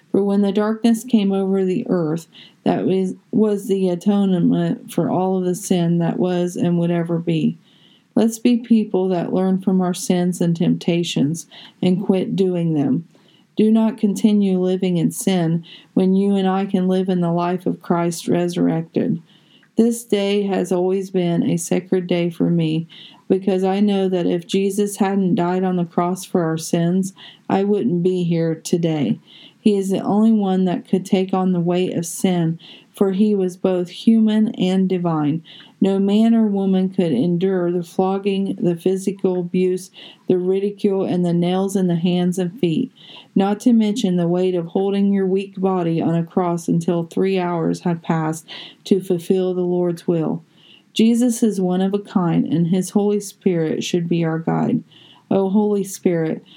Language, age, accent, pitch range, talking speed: English, 40-59, American, 175-200 Hz, 175 wpm